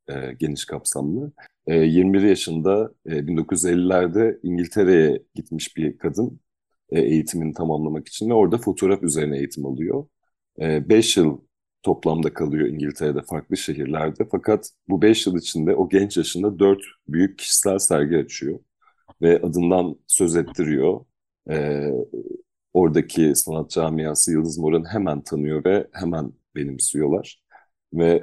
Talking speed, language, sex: 115 wpm, Turkish, male